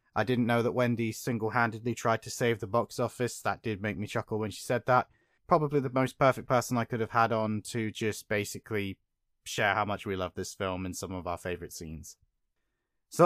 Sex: male